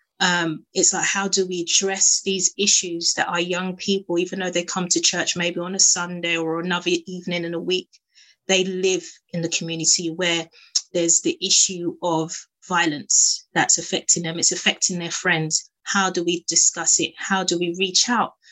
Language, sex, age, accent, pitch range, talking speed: English, female, 20-39, British, 170-190 Hz, 185 wpm